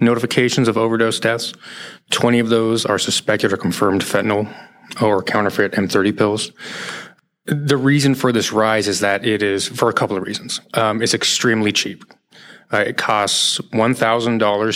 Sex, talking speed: male, 150 wpm